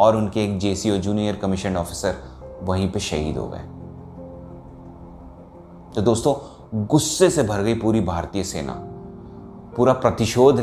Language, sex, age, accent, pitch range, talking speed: Hindi, male, 30-49, native, 85-130 Hz, 130 wpm